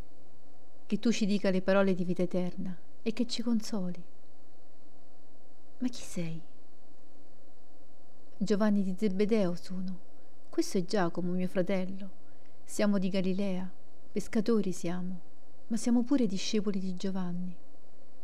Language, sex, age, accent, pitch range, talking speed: Italian, female, 40-59, native, 185-220 Hz, 120 wpm